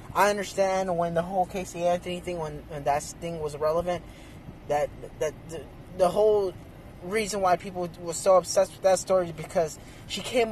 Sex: male